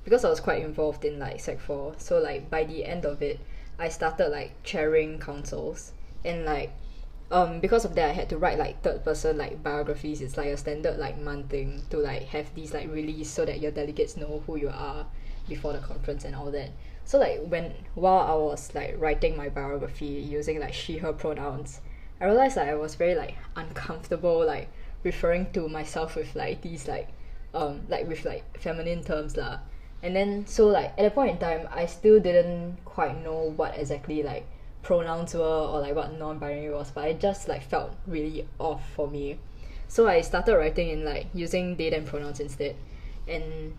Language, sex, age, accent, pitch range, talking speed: English, female, 10-29, Malaysian, 150-175 Hz, 200 wpm